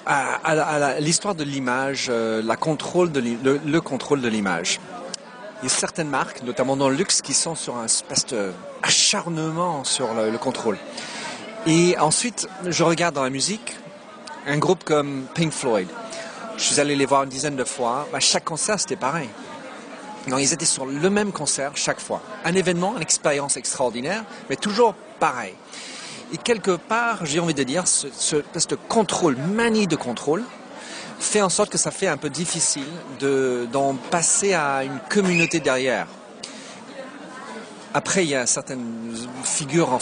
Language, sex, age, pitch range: French, male, 40-59, 135-185 Hz